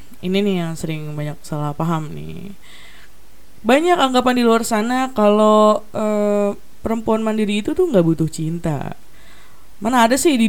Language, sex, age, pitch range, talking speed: Indonesian, female, 20-39, 170-225 Hz, 150 wpm